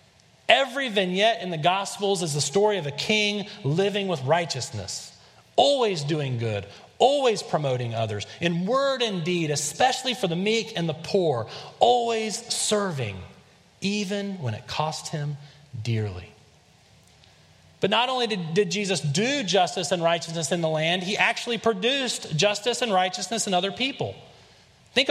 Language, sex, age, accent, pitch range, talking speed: English, male, 30-49, American, 155-220 Hz, 150 wpm